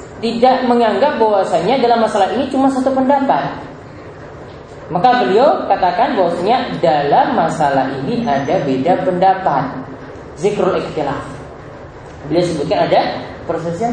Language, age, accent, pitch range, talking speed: Indonesian, 20-39, native, 160-255 Hz, 110 wpm